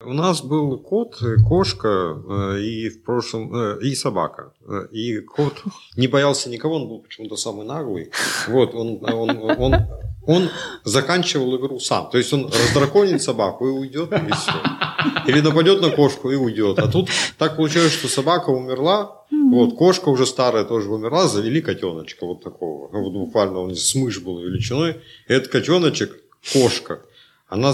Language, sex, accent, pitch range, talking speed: Russian, male, native, 115-155 Hz, 155 wpm